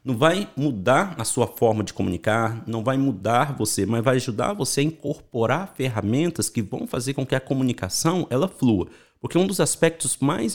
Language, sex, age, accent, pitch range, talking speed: Portuguese, male, 50-69, Brazilian, 110-145 Hz, 190 wpm